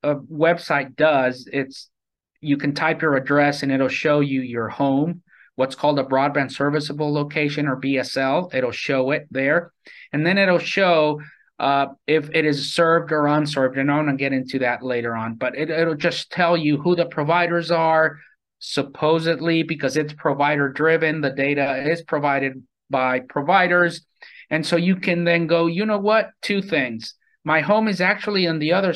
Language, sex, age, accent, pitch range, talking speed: English, male, 30-49, American, 135-170 Hz, 175 wpm